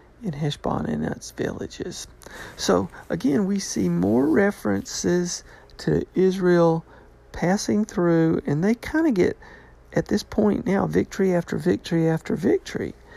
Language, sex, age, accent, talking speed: English, male, 50-69, American, 130 wpm